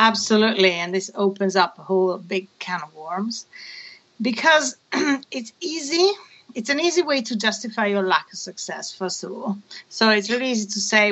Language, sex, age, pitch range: English, female, 40-59, 190-230 Hz